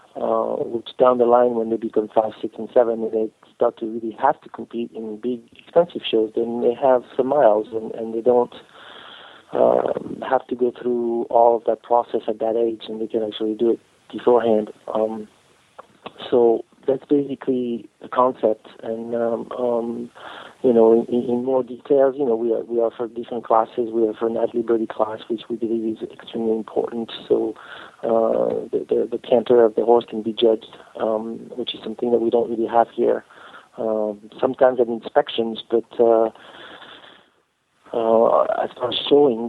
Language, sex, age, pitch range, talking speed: English, male, 30-49, 115-120 Hz, 180 wpm